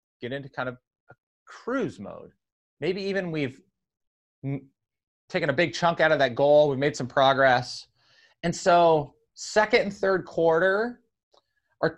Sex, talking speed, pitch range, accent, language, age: male, 150 wpm, 120-170 Hz, American, English, 30-49